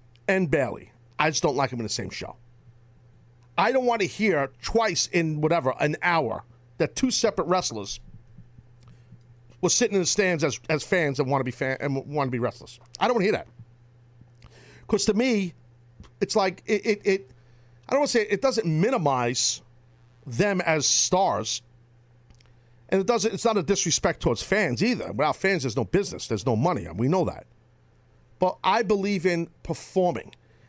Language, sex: English, male